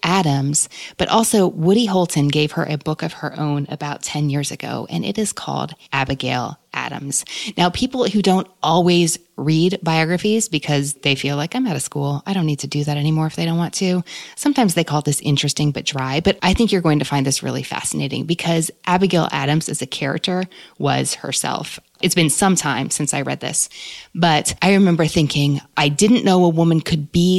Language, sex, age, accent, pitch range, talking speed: English, female, 20-39, American, 145-185 Hz, 205 wpm